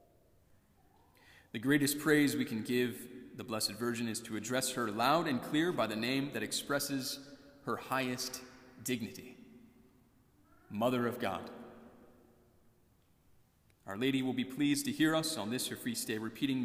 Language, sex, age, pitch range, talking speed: English, male, 30-49, 100-130 Hz, 150 wpm